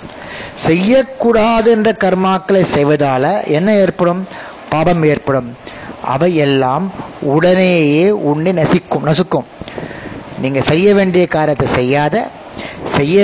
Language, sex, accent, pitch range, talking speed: Tamil, male, native, 145-200 Hz, 90 wpm